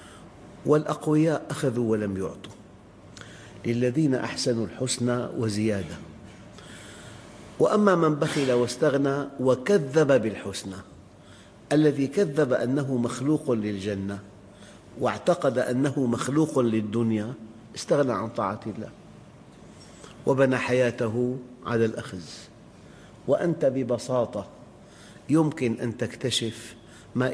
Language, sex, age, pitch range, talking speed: English, male, 50-69, 105-130 Hz, 80 wpm